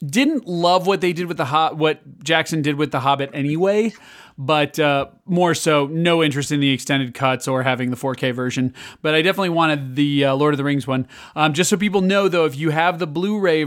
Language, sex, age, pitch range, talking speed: English, male, 30-49, 135-160 Hz, 230 wpm